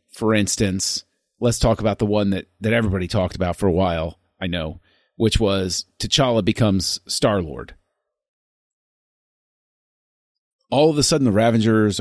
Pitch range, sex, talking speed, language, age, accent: 95-115 Hz, male, 140 wpm, English, 40-59, American